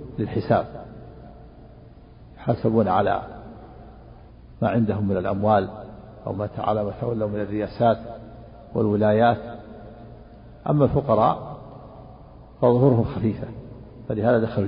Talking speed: 80 wpm